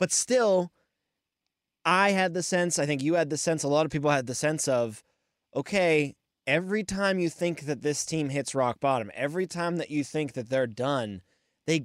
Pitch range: 125-155 Hz